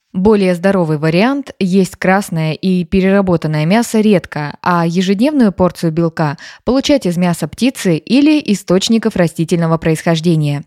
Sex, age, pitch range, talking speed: female, 20-39, 165-215 Hz, 120 wpm